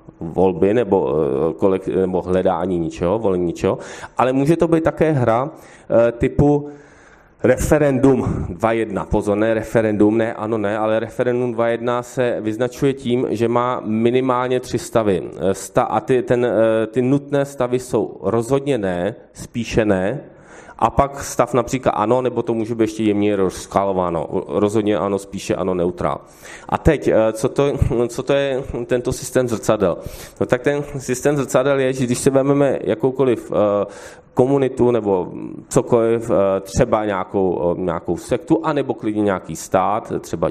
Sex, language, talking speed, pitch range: male, Czech, 140 wpm, 105-130 Hz